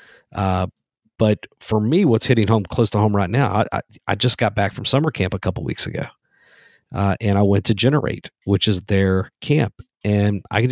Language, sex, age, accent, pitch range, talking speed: English, male, 50-69, American, 95-115 Hz, 215 wpm